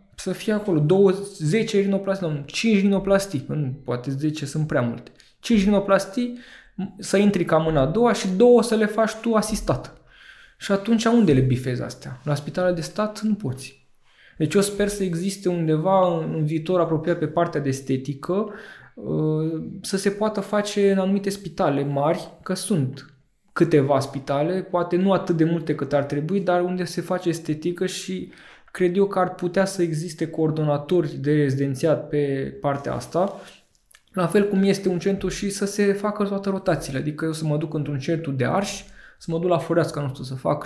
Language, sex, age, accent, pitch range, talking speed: Romanian, male, 20-39, native, 150-200 Hz, 180 wpm